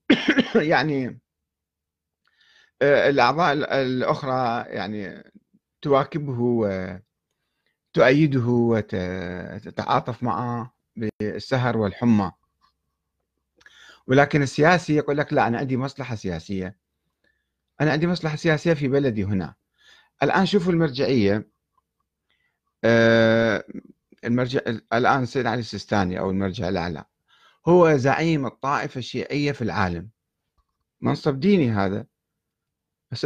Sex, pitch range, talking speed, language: male, 105-155 Hz, 85 wpm, Arabic